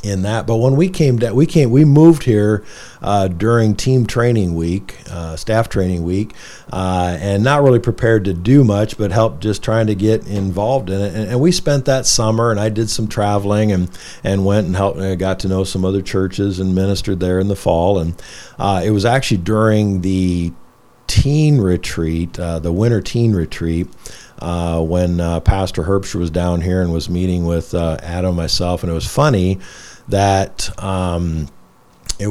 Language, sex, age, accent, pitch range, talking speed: English, male, 50-69, American, 90-110 Hz, 195 wpm